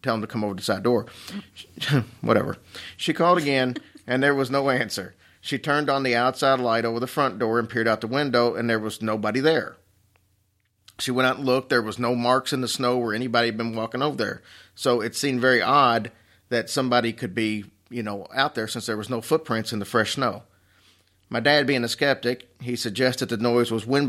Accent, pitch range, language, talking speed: American, 110-130 Hz, English, 225 wpm